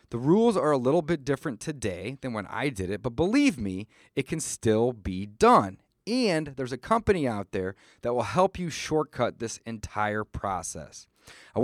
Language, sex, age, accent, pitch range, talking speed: English, male, 30-49, American, 110-160 Hz, 185 wpm